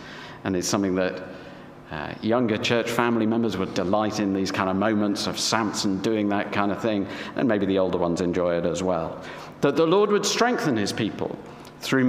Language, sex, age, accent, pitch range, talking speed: English, male, 50-69, British, 105-150 Hz, 200 wpm